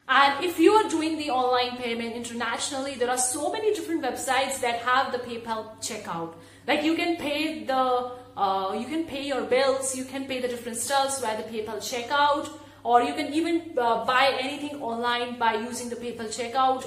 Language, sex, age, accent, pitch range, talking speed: English, female, 30-49, Indian, 235-285 Hz, 190 wpm